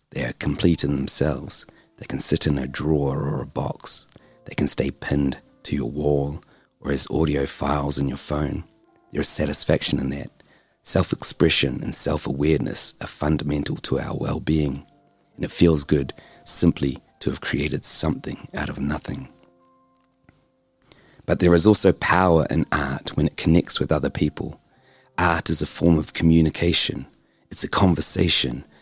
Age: 40-59